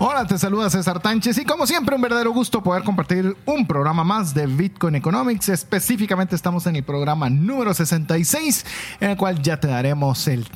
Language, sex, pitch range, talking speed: Spanish, male, 140-200 Hz, 180 wpm